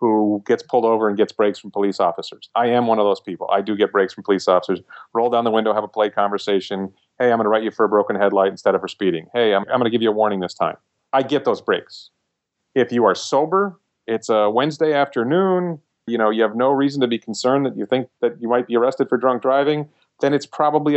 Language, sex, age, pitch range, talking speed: English, male, 40-59, 110-145 Hz, 260 wpm